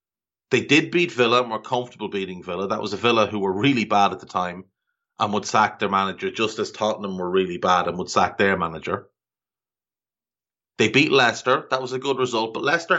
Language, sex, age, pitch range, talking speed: English, male, 30-49, 100-130 Hz, 210 wpm